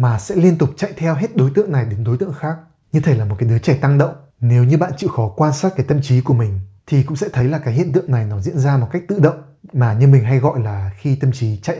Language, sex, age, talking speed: Vietnamese, male, 20-39, 310 wpm